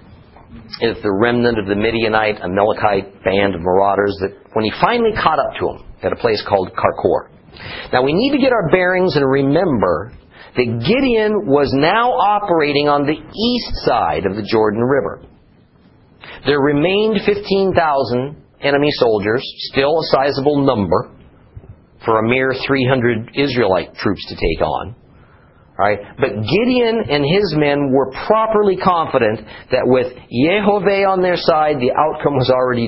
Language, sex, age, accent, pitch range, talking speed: English, male, 50-69, American, 110-170 Hz, 150 wpm